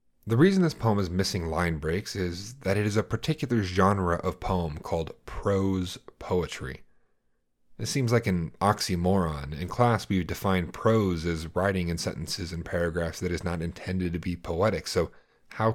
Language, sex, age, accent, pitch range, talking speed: English, male, 30-49, American, 85-105 Hz, 170 wpm